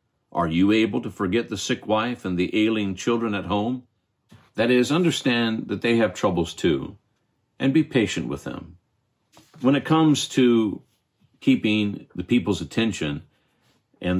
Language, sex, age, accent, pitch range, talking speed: English, male, 50-69, American, 95-115 Hz, 150 wpm